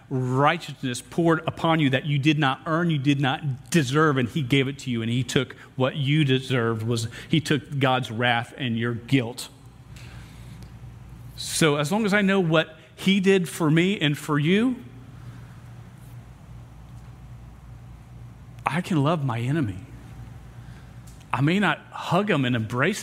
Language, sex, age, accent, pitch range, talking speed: English, male, 40-59, American, 130-155 Hz, 155 wpm